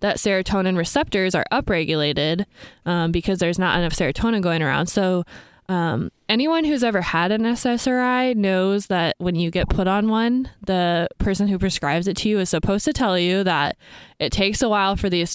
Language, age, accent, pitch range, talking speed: English, 20-39, American, 170-205 Hz, 190 wpm